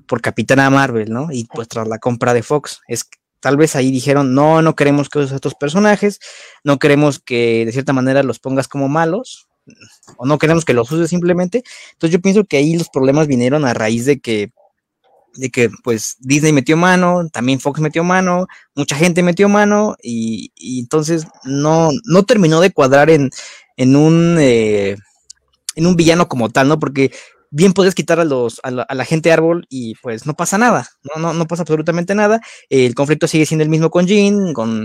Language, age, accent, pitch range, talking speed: Spanish, 20-39, Mexican, 130-175 Hz, 205 wpm